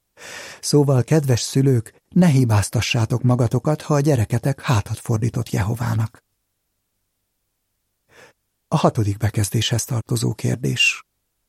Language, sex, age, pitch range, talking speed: Hungarian, male, 60-79, 105-140 Hz, 90 wpm